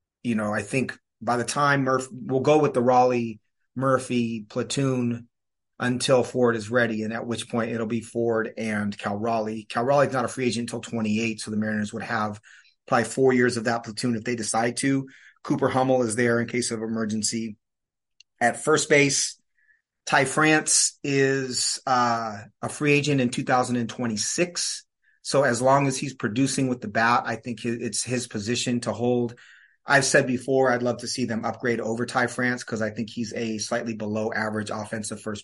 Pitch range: 115-130 Hz